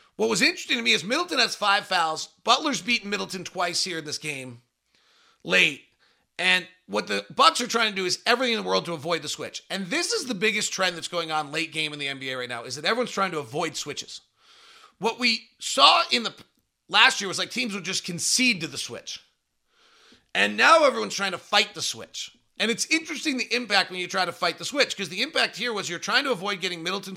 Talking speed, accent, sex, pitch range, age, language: 235 wpm, American, male, 170-235 Hz, 30-49, English